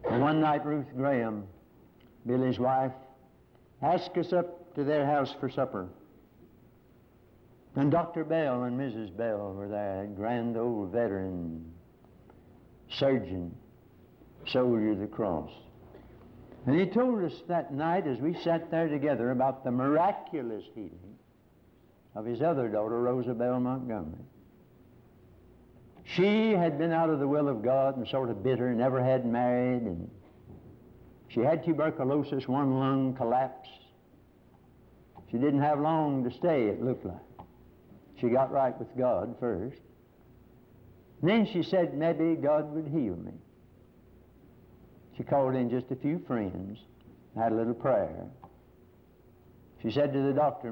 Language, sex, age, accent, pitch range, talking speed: English, male, 60-79, American, 120-145 Hz, 140 wpm